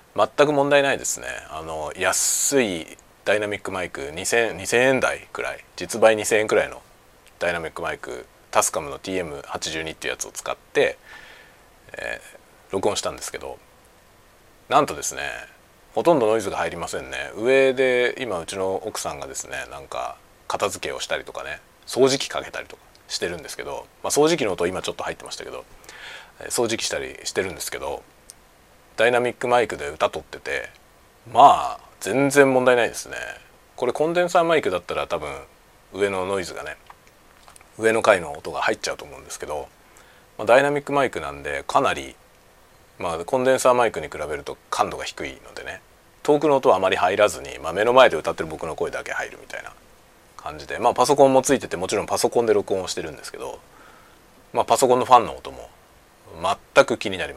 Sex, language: male, Japanese